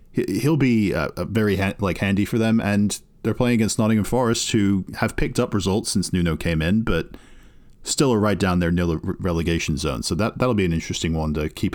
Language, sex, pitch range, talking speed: English, male, 85-115 Hz, 220 wpm